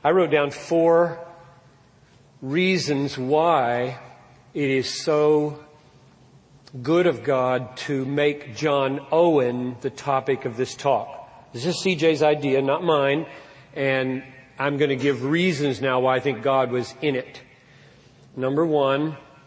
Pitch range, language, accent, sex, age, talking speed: 135-165 Hz, English, American, male, 40-59, 135 wpm